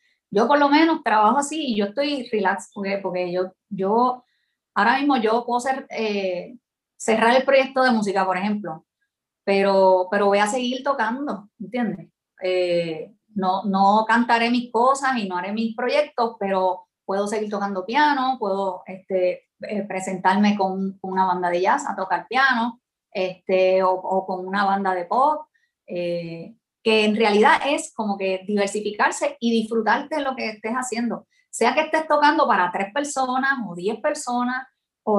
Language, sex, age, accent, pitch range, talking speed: Spanish, female, 30-49, American, 195-255 Hz, 165 wpm